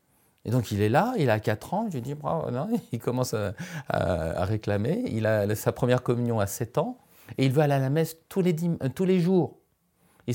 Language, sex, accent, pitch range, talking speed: French, male, French, 115-165 Hz, 245 wpm